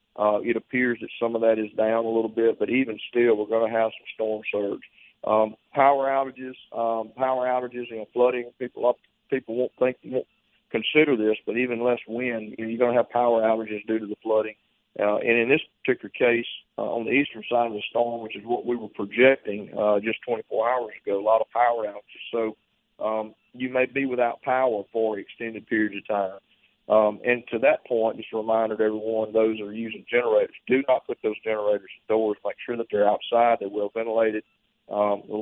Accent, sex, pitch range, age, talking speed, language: American, male, 110-120 Hz, 40-59, 210 wpm, English